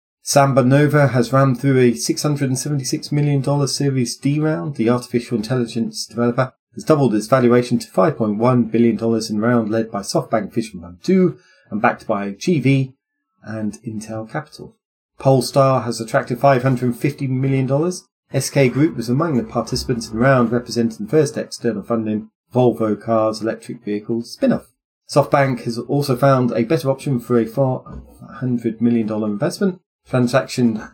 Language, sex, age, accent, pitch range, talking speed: English, male, 30-49, British, 115-140 Hz, 140 wpm